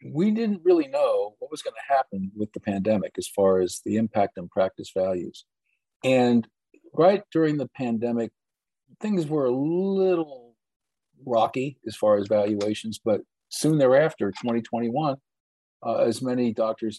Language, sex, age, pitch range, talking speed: English, male, 50-69, 105-140 Hz, 145 wpm